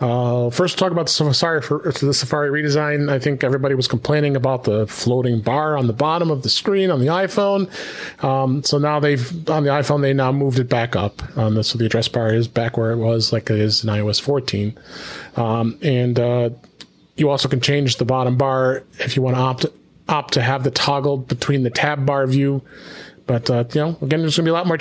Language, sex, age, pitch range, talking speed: English, male, 30-49, 130-155 Hz, 230 wpm